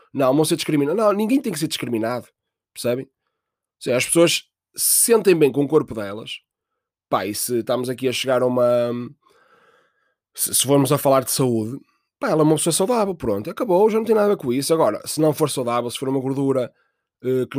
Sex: male